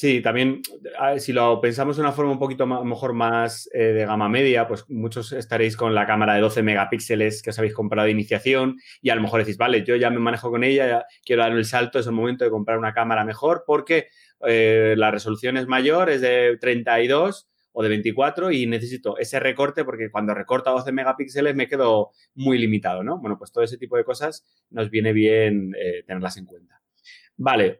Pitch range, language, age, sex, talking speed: 110-135 Hz, Spanish, 30-49, male, 215 wpm